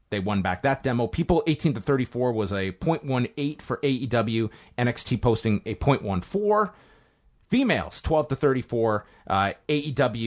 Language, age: English, 30-49